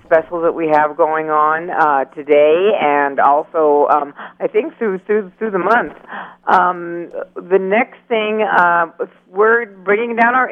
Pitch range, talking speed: 165-210 Hz, 150 wpm